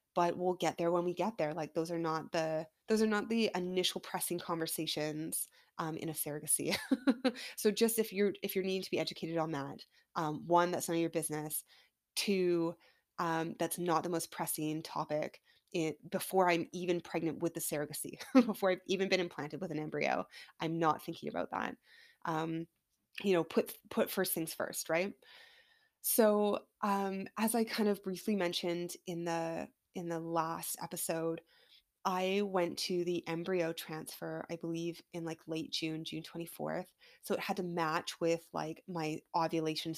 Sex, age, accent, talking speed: female, 20-39, American, 175 wpm